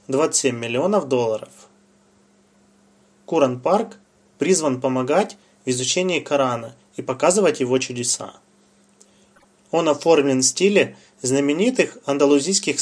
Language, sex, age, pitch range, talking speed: Russian, male, 20-39, 130-185 Hz, 90 wpm